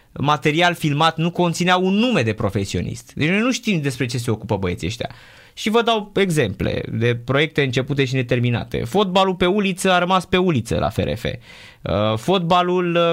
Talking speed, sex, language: 170 wpm, male, Romanian